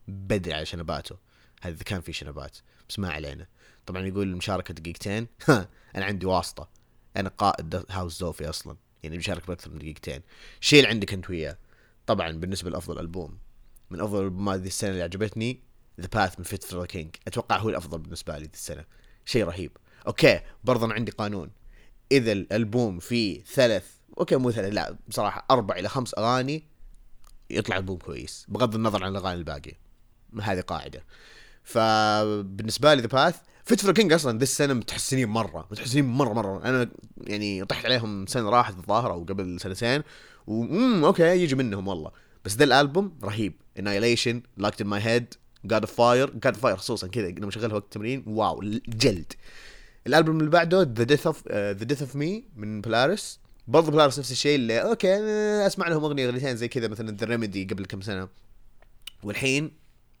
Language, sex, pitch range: Arabic, male, 95-125 Hz